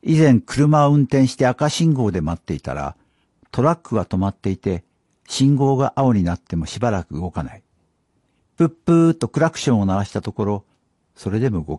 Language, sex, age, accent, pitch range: Japanese, male, 60-79, native, 95-130 Hz